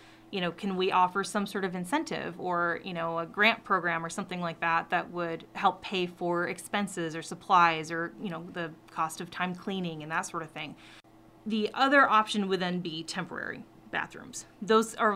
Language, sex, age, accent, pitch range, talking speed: English, female, 30-49, American, 165-210 Hz, 200 wpm